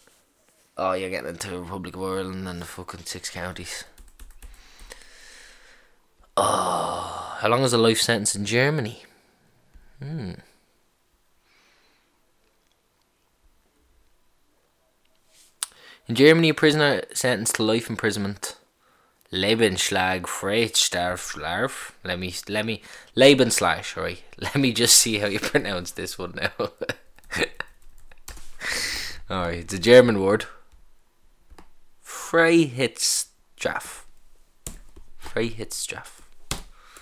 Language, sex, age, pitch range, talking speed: English, male, 20-39, 90-130 Hz, 90 wpm